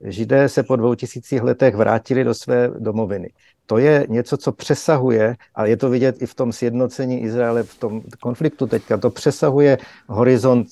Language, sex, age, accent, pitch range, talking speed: Czech, male, 50-69, native, 115-135 Hz, 175 wpm